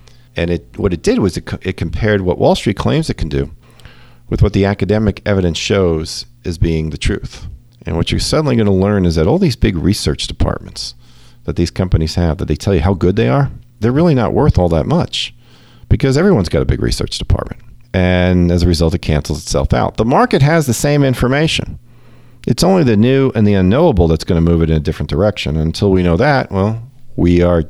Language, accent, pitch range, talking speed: English, American, 90-130 Hz, 225 wpm